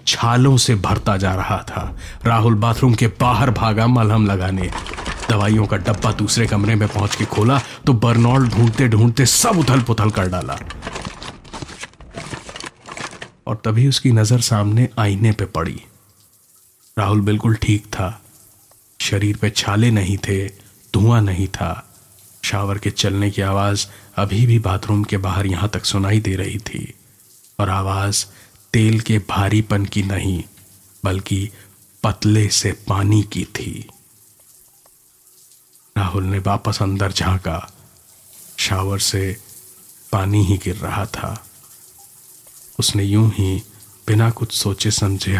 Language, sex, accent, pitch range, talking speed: Hindi, male, native, 95-115 Hz, 130 wpm